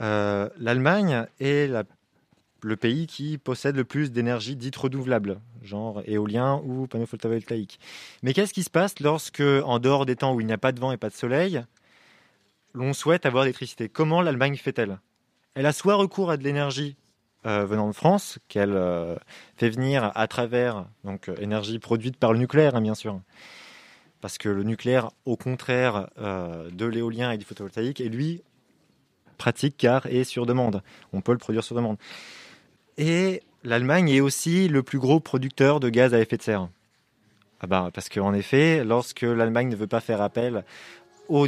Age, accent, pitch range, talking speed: 20-39, French, 110-135 Hz, 180 wpm